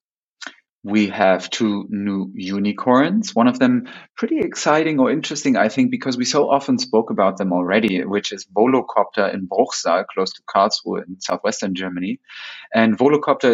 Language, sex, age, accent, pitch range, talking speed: English, male, 30-49, German, 100-130 Hz, 155 wpm